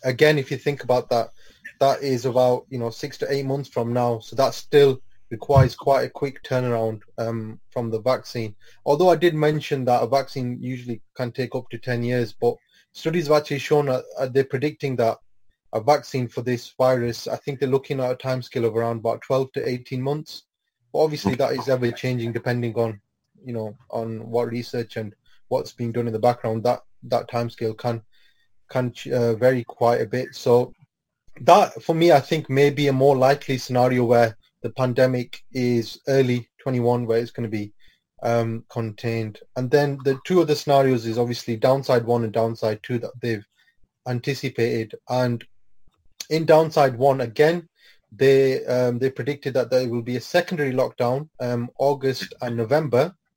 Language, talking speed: English, 185 wpm